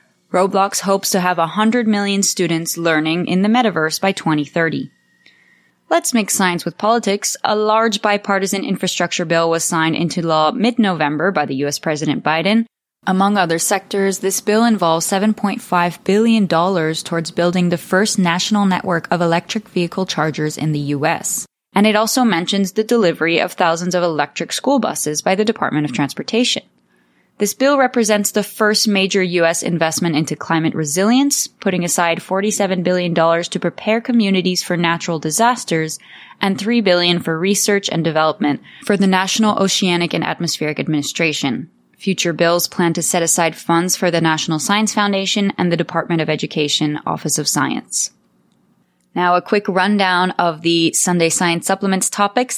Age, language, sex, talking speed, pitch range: 20-39, English, female, 155 wpm, 165-205 Hz